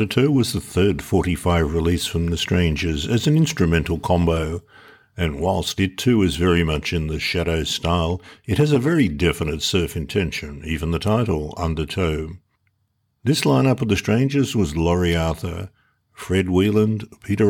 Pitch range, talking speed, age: 80-105 Hz, 160 wpm, 60-79